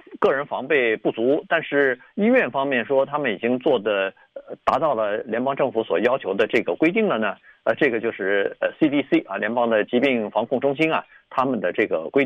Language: Chinese